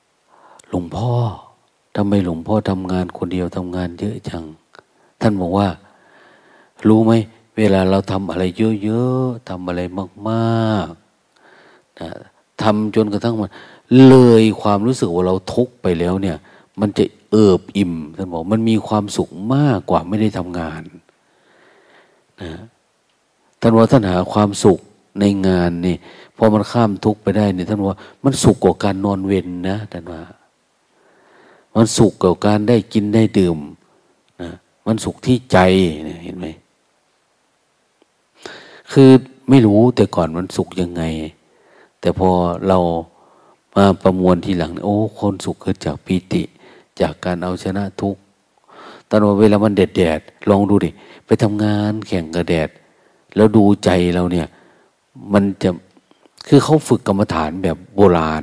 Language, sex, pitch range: Thai, male, 90-110 Hz